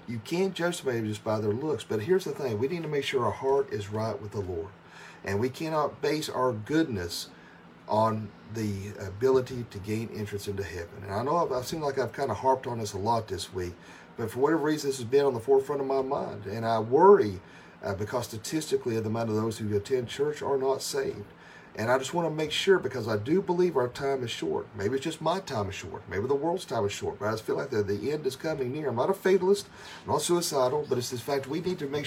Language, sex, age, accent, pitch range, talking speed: English, male, 40-59, American, 105-160 Hz, 260 wpm